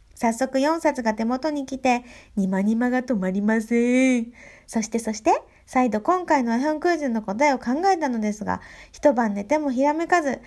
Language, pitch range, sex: Japanese, 200-285 Hz, female